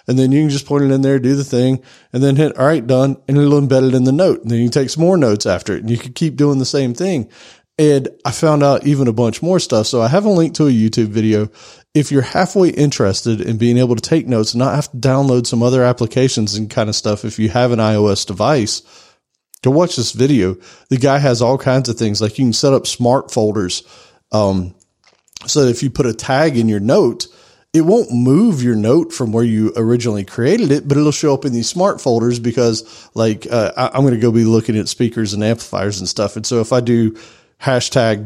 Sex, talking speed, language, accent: male, 245 wpm, English, American